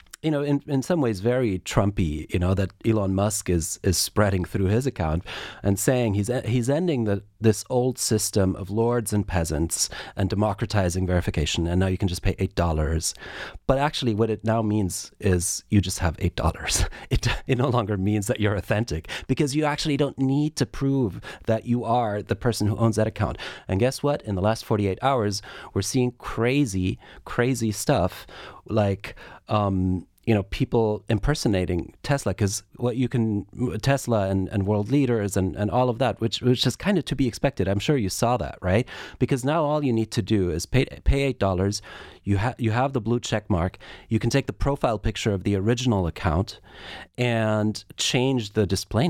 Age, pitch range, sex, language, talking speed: 30-49, 100-125 Hz, male, English, 195 wpm